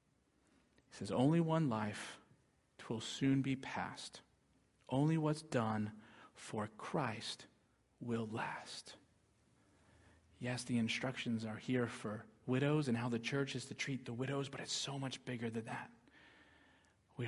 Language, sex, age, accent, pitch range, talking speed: English, male, 40-59, American, 115-135 Hz, 140 wpm